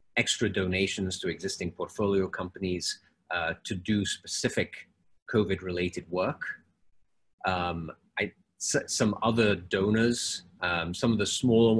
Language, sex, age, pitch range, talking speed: English, male, 30-49, 90-105 Hz, 105 wpm